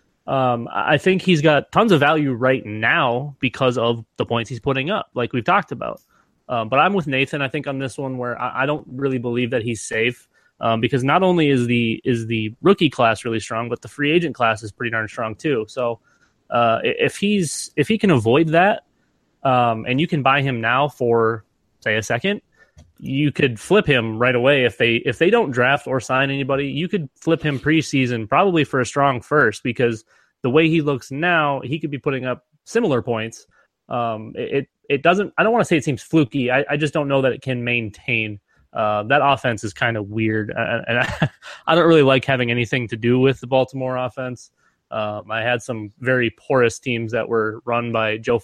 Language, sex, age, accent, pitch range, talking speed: English, male, 20-39, American, 115-145 Hz, 215 wpm